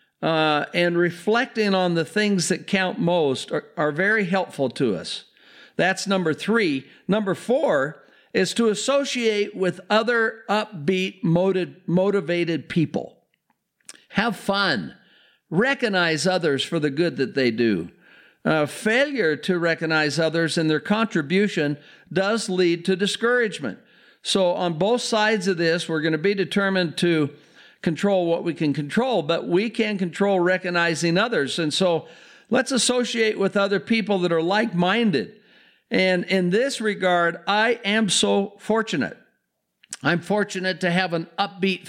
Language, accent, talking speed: English, American, 140 wpm